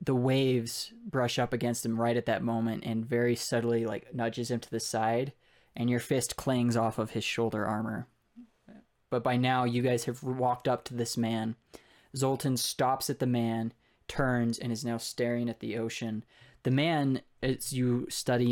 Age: 20-39